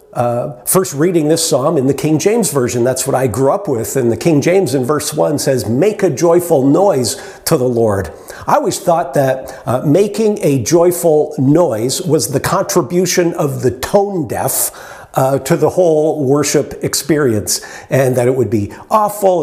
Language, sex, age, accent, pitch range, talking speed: English, male, 50-69, American, 140-195 Hz, 180 wpm